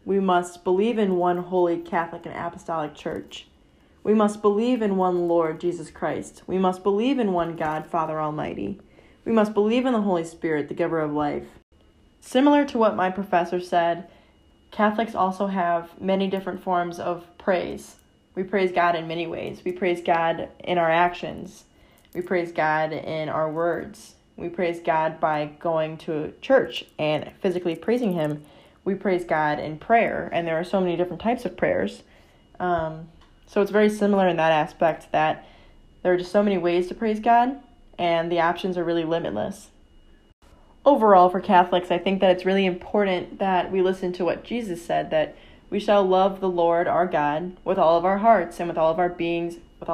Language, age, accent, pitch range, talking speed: English, 10-29, American, 165-195 Hz, 185 wpm